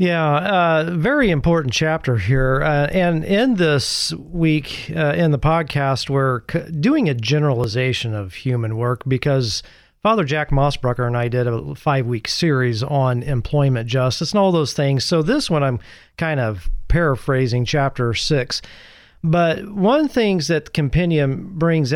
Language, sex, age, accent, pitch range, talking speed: English, male, 40-59, American, 120-160 Hz, 150 wpm